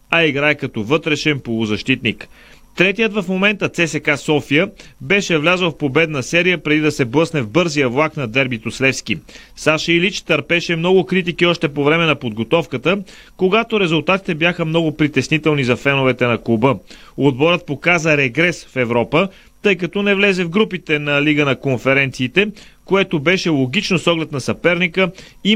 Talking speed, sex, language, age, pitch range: 155 wpm, male, Bulgarian, 30-49, 140-180 Hz